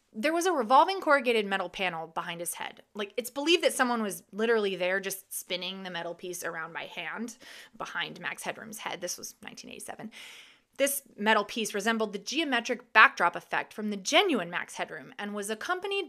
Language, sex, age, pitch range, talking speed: English, female, 20-39, 190-265 Hz, 185 wpm